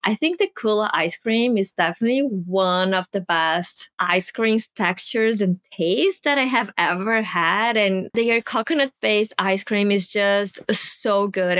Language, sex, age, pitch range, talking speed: English, female, 20-39, 185-235 Hz, 160 wpm